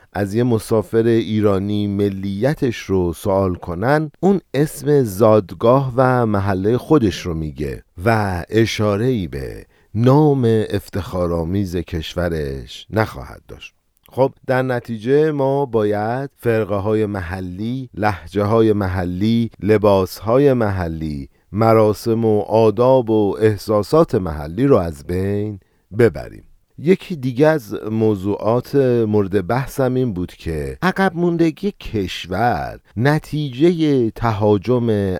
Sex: male